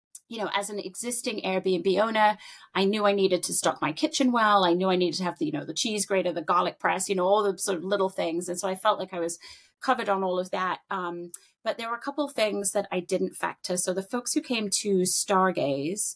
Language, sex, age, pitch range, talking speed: English, female, 30-49, 180-220 Hz, 260 wpm